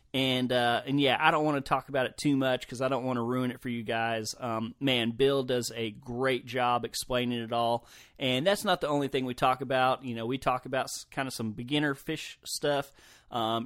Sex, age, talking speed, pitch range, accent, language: male, 30-49, 235 wpm, 120-140 Hz, American, English